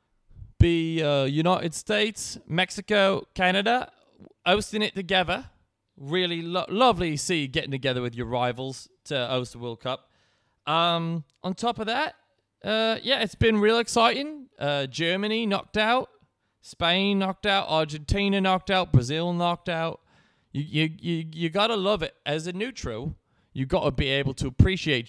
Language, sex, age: English, male, 20-39